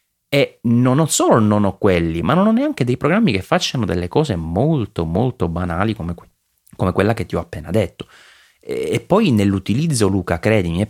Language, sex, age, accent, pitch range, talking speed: Italian, male, 30-49, native, 90-105 Hz, 185 wpm